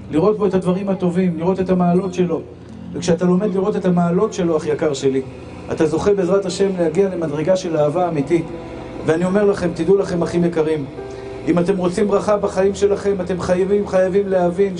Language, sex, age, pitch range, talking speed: Hebrew, male, 50-69, 170-205 Hz, 180 wpm